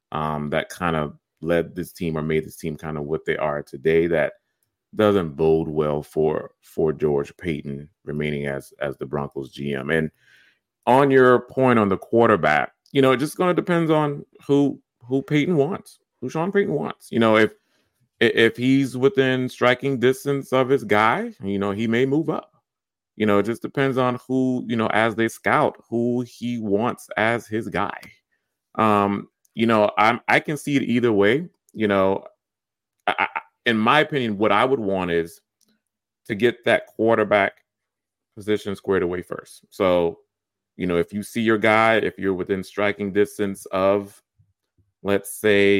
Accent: American